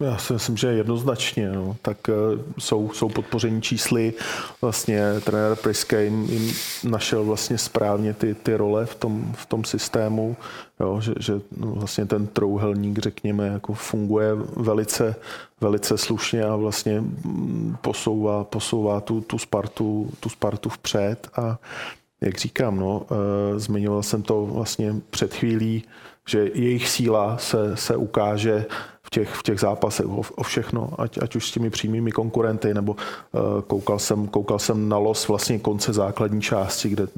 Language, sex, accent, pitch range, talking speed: Czech, male, native, 105-115 Hz, 135 wpm